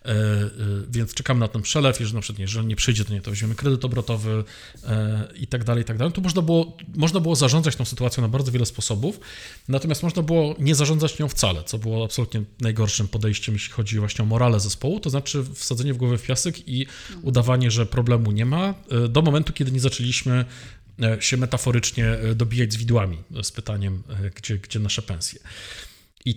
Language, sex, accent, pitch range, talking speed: Polish, male, native, 110-140 Hz, 185 wpm